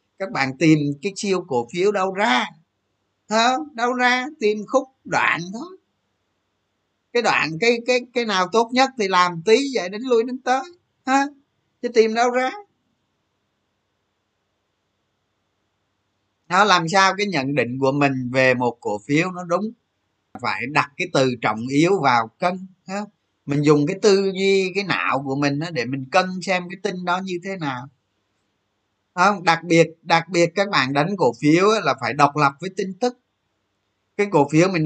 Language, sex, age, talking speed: Vietnamese, male, 20-39, 165 wpm